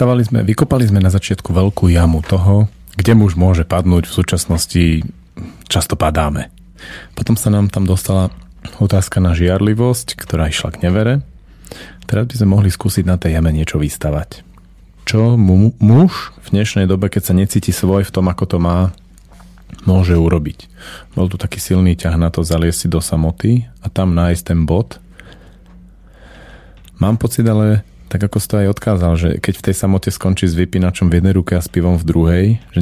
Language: Slovak